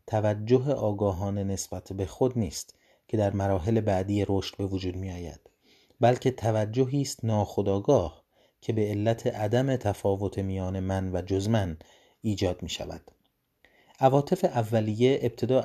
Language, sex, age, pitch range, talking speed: Persian, male, 30-49, 95-120 Hz, 130 wpm